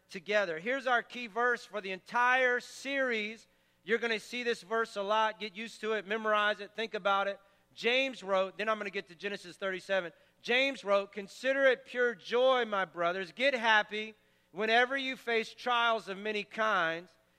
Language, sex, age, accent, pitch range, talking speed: English, male, 40-59, American, 205-245 Hz, 185 wpm